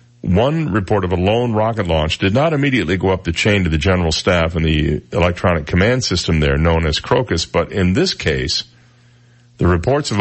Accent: American